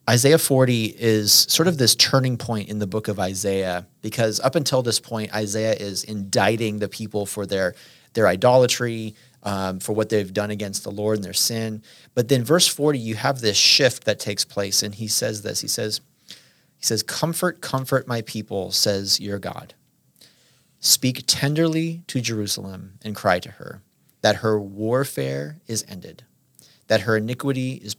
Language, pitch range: English, 105-130 Hz